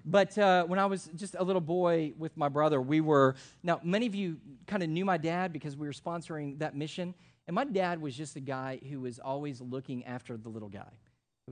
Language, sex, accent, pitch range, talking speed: Dutch, male, American, 135-180 Hz, 235 wpm